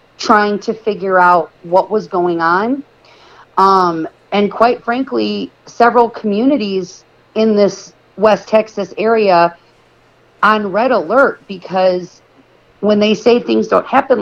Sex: female